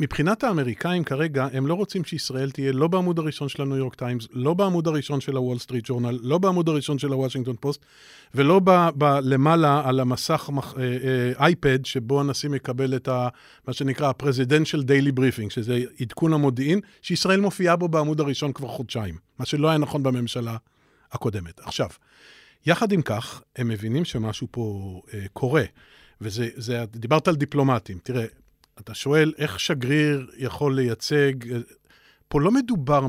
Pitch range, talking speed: 125-155 Hz, 155 wpm